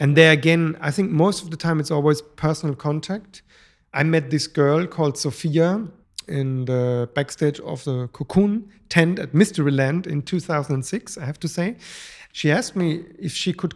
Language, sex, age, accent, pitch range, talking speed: English, male, 40-59, German, 135-165 Hz, 175 wpm